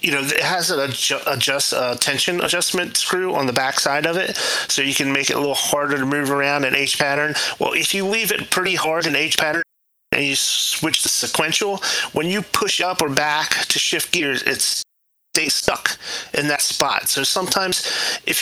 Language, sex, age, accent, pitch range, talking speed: English, male, 30-49, American, 125-155 Hz, 190 wpm